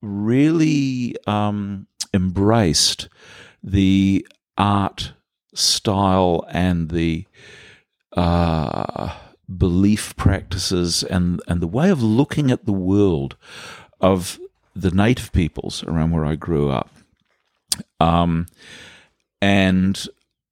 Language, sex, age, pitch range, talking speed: English, male, 50-69, 85-105 Hz, 90 wpm